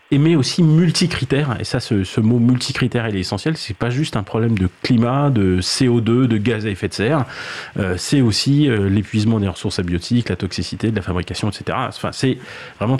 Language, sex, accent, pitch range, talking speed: French, male, French, 105-135 Hz, 205 wpm